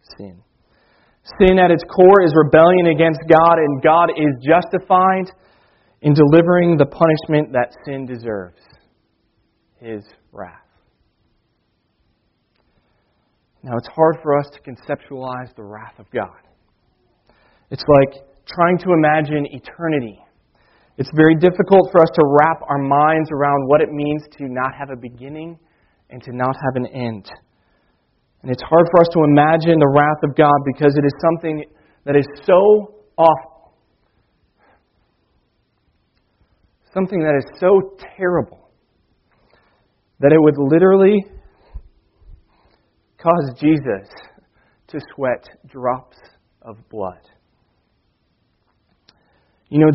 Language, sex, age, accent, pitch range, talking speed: English, male, 30-49, American, 125-165 Hz, 120 wpm